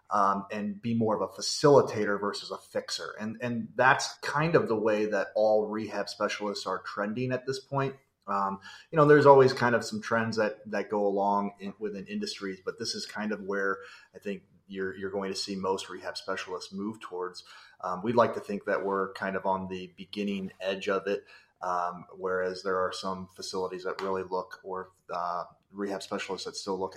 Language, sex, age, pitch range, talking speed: English, male, 30-49, 95-115 Hz, 200 wpm